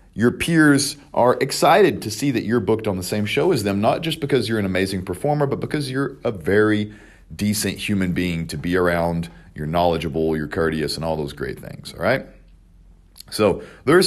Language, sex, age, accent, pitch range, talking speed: English, male, 40-59, American, 95-145 Hz, 200 wpm